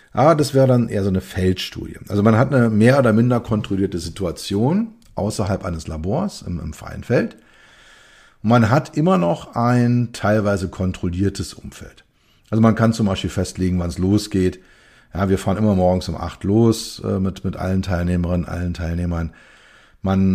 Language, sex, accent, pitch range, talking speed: German, male, German, 90-110 Hz, 165 wpm